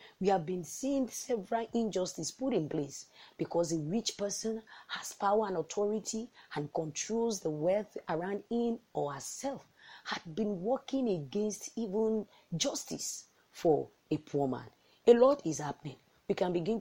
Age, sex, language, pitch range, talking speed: 40-59, female, English, 150-215 Hz, 150 wpm